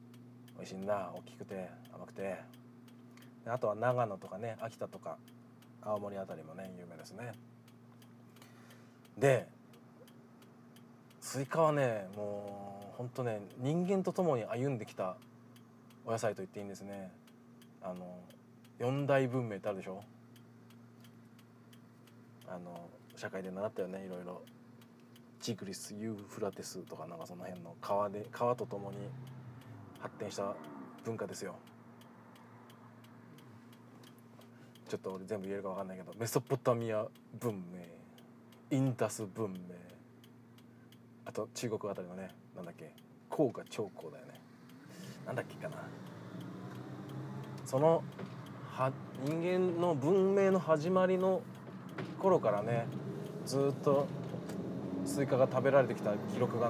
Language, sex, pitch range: Japanese, male, 105-125 Hz